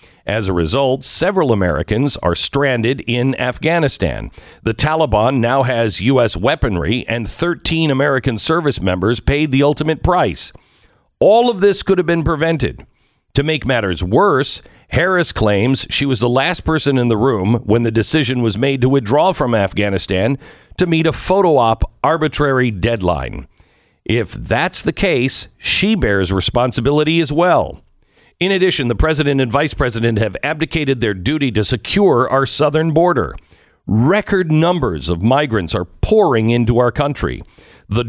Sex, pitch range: male, 110-150 Hz